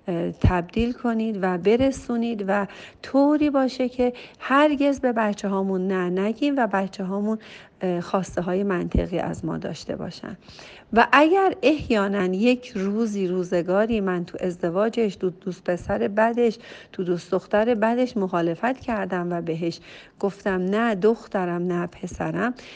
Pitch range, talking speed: 185-235 Hz, 130 wpm